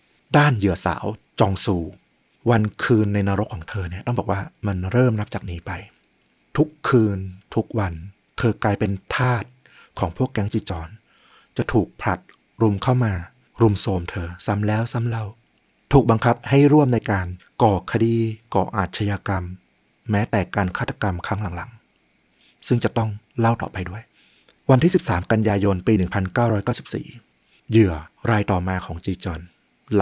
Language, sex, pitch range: Thai, male, 95-115 Hz